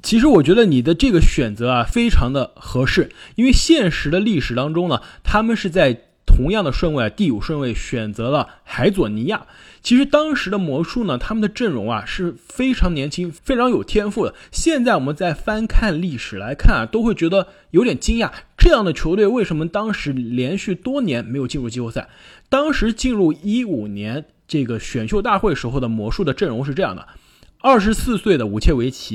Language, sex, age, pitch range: Chinese, male, 20-39, 125-205 Hz